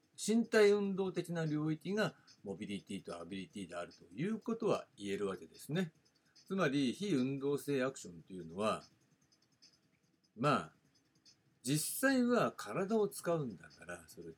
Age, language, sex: 60-79, Japanese, male